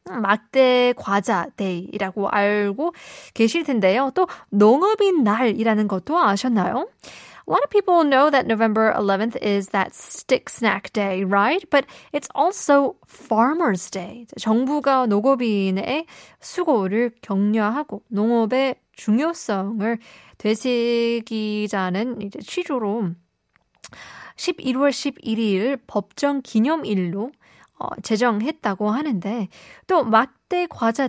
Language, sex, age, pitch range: Korean, female, 20-39, 200-260 Hz